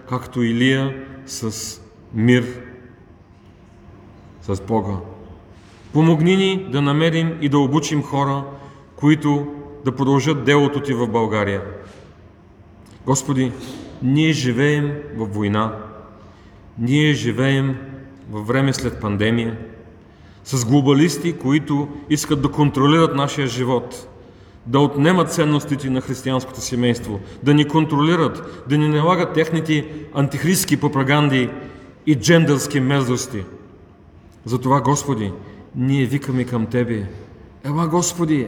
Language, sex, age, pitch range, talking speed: Bulgarian, male, 40-59, 110-145 Hz, 105 wpm